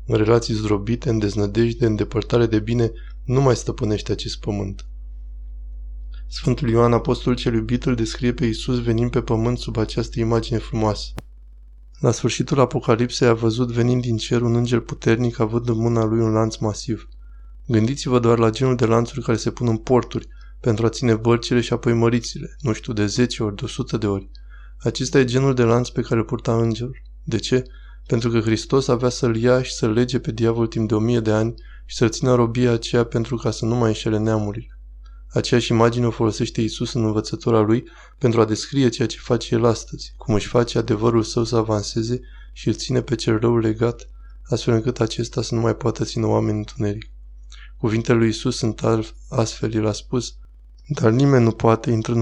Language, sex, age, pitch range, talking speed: Romanian, male, 20-39, 110-120 Hz, 195 wpm